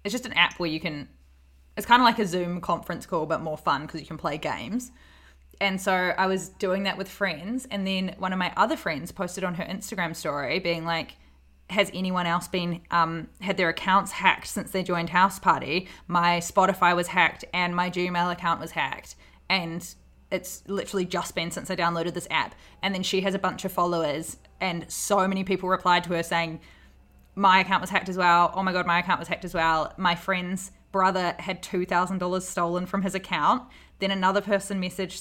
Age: 20-39